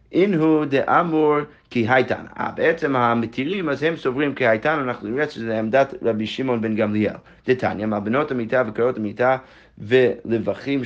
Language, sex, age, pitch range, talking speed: Hebrew, male, 30-49, 110-140 Hz, 135 wpm